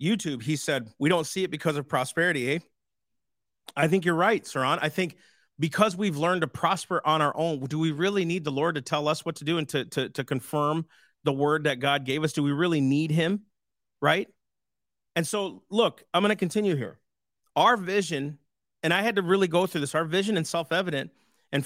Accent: American